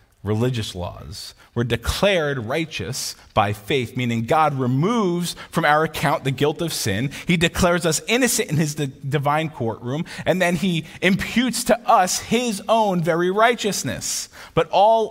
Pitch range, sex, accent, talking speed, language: 115-180 Hz, male, American, 145 wpm, English